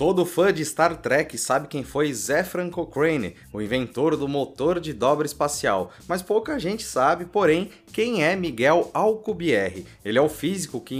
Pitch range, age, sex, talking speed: 125-175 Hz, 30-49, male, 170 wpm